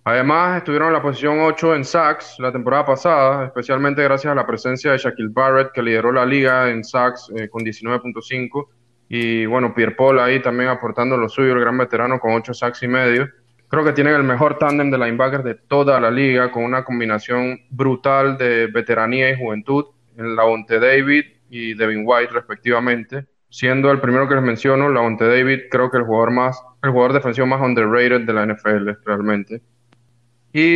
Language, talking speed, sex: Spanish, 185 wpm, male